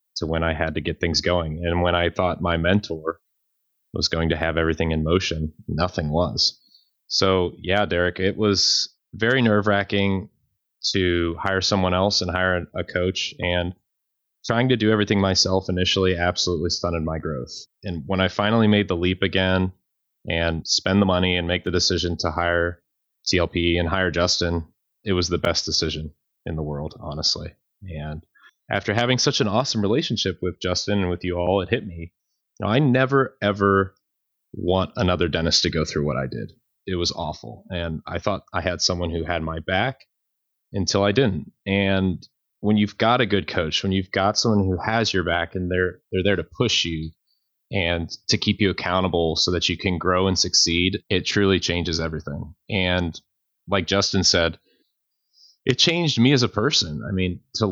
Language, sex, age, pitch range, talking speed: English, male, 20-39, 85-100 Hz, 185 wpm